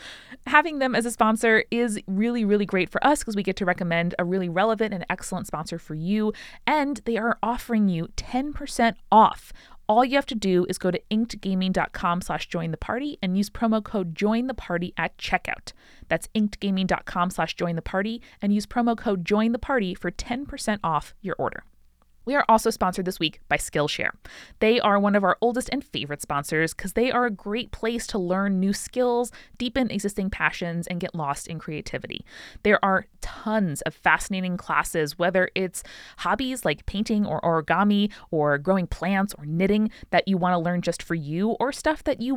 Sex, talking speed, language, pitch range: female, 195 wpm, English, 175-230 Hz